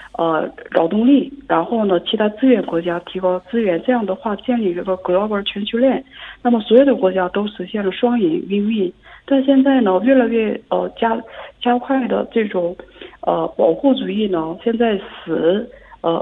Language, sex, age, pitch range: Korean, female, 50-69, 185-235 Hz